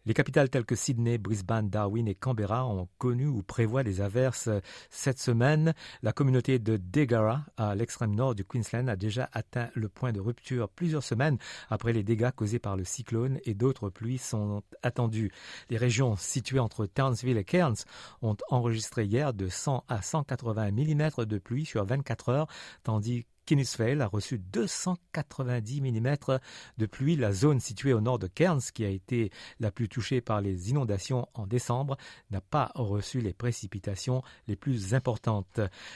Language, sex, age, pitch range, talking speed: French, male, 50-69, 110-130 Hz, 170 wpm